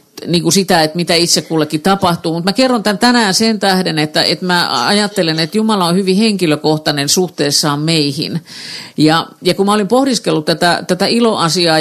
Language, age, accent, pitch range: Finnish, 50-69, native, 160-200 Hz